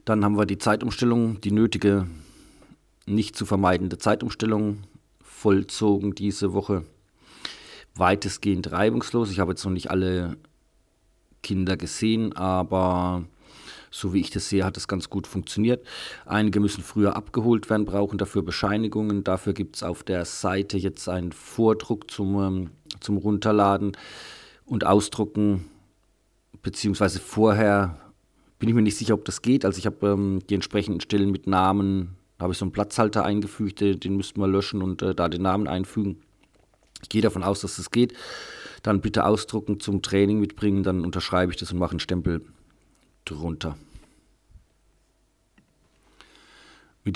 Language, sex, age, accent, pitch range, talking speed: German, male, 40-59, German, 95-105 Hz, 145 wpm